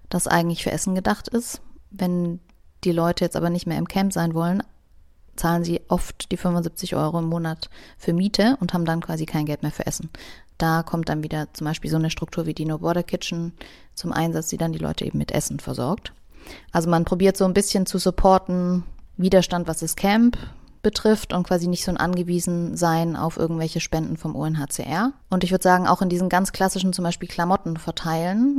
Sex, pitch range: female, 160-180 Hz